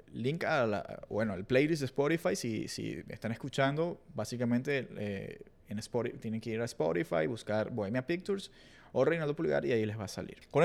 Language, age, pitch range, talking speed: Spanish, 20-39, 120-155 Hz, 190 wpm